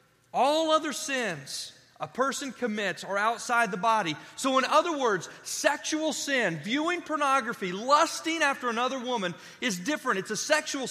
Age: 30-49